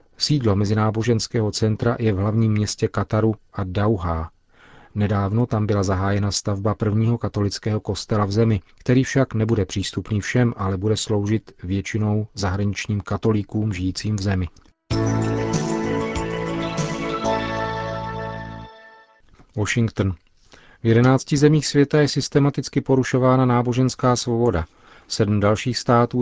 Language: Czech